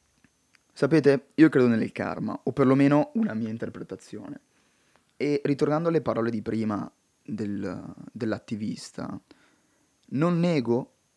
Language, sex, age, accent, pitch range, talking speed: Italian, male, 20-39, native, 115-140 Hz, 100 wpm